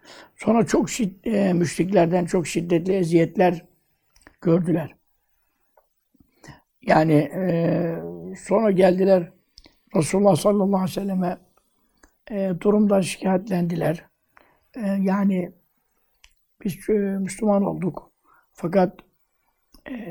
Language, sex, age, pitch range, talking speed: Turkish, male, 60-79, 175-205 Hz, 85 wpm